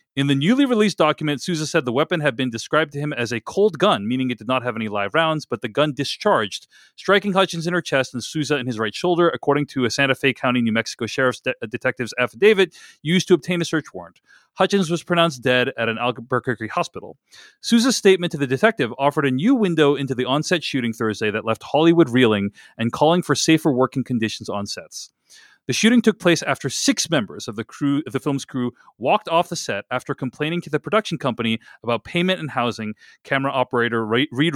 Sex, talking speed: male, 215 wpm